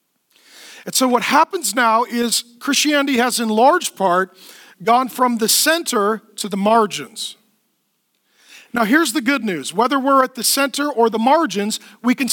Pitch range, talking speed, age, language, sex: 215-275 Hz, 160 wpm, 40-59, English, male